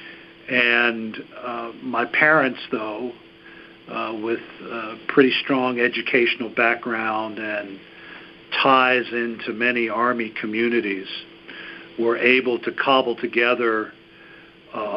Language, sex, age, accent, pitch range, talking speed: English, male, 60-79, American, 110-125 Hz, 95 wpm